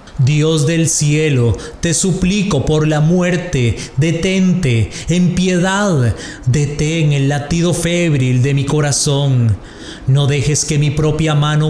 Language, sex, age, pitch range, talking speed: English, male, 30-49, 130-165 Hz, 125 wpm